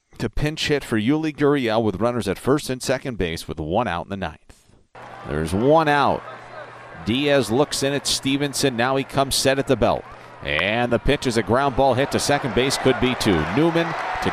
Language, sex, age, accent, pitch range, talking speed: English, male, 50-69, American, 90-135 Hz, 210 wpm